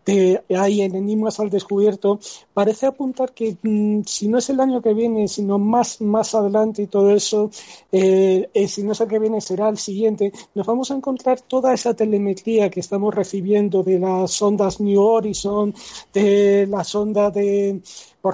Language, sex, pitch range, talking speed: Spanish, male, 195-225 Hz, 180 wpm